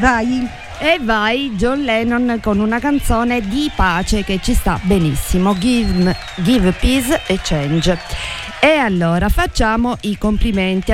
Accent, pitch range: native, 175-230 Hz